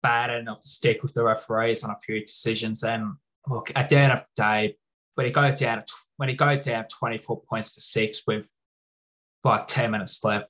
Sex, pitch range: male, 110-135 Hz